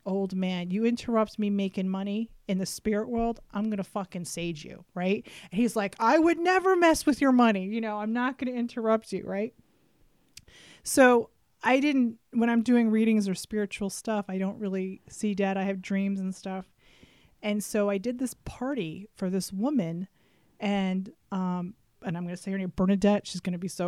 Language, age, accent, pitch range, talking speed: English, 30-49, American, 195-245 Hz, 195 wpm